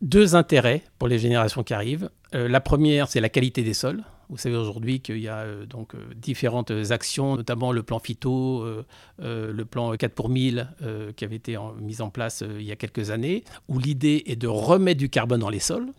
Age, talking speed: 50-69, 225 wpm